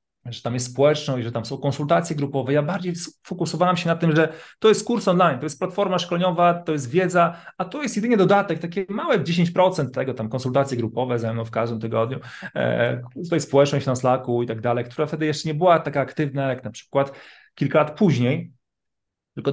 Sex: male